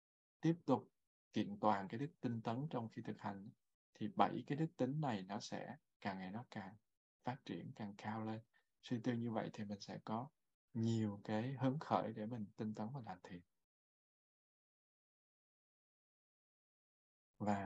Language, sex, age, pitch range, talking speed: Vietnamese, male, 20-39, 100-120 Hz, 165 wpm